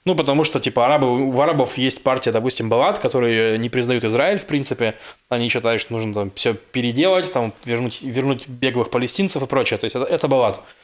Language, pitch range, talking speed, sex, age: Russian, 125-155 Hz, 200 wpm, male, 20-39